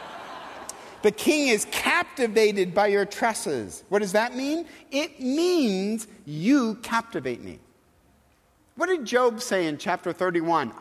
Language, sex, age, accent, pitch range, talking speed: English, male, 50-69, American, 135-225 Hz, 130 wpm